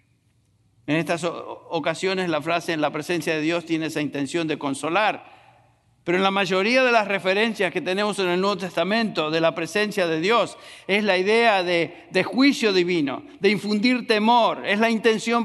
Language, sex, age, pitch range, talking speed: English, male, 50-69, 145-190 Hz, 180 wpm